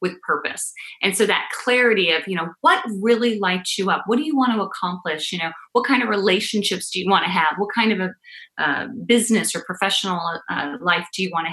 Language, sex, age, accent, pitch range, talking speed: English, female, 30-49, American, 175-235 Hz, 235 wpm